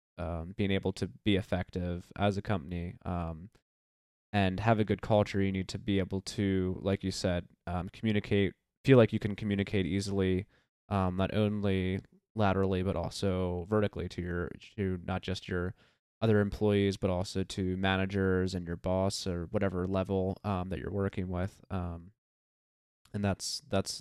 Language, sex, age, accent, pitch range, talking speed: English, male, 20-39, American, 90-100 Hz, 165 wpm